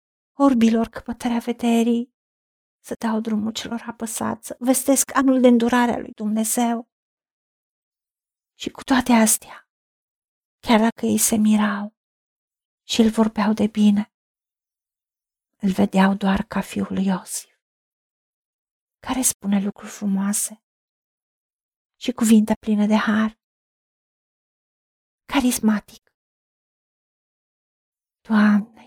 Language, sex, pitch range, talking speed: Romanian, female, 215-240 Hz, 100 wpm